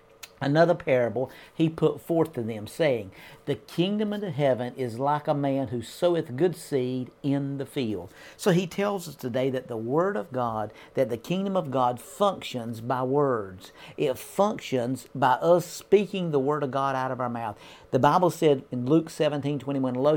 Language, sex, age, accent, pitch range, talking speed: English, male, 50-69, American, 130-165 Hz, 185 wpm